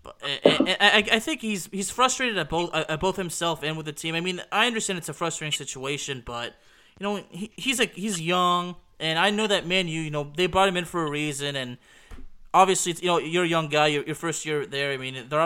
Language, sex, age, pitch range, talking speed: English, male, 20-39, 145-180 Hz, 220 wpm